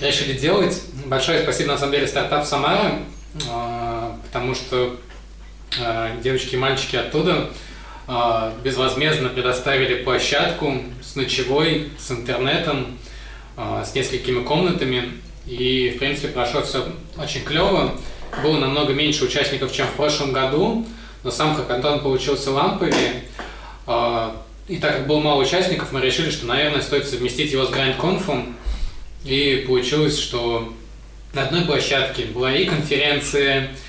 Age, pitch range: 20-39, 125-145 Hz